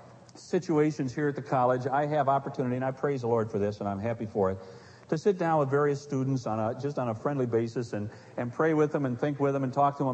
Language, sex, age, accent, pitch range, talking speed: English, male, 50-69, American, 125-175 Hz, 270 wpm